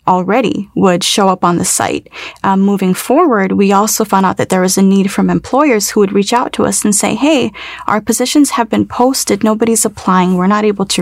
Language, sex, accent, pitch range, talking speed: English, female, American, 185-220 Hz, 225 wpm